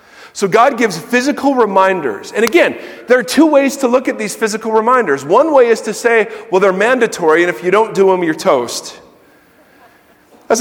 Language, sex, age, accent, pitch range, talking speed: English, male, 40-59, American, 205-265 Hz, 190 wpm